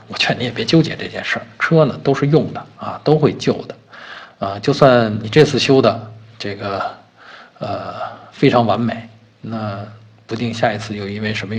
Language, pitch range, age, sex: Chinese, 110-125 Hz, 50-69, male